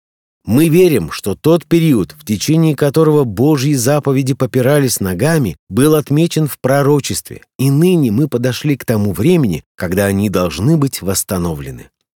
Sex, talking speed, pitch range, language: male, 140 wpm, 110-155 Hz, Russian